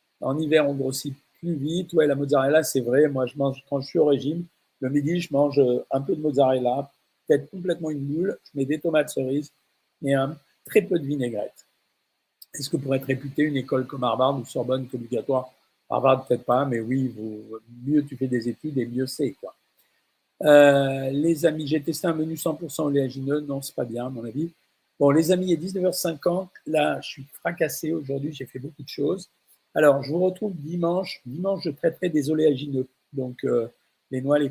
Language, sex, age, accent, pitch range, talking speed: French, male, 50-69, French, 130-155 Hz, 195 wpm